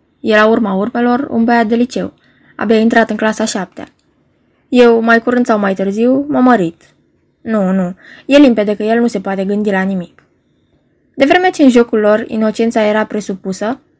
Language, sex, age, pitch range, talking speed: Romanian, female, 20-39, 200-255 Hz, 175 wpm